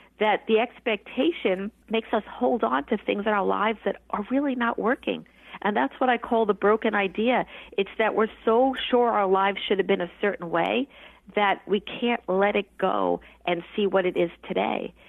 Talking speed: 200 wpm